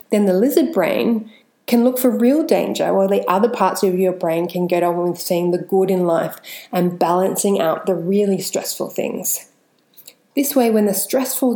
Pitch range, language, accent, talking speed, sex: 180-235 Hz, English, Australian, 190 wpm, female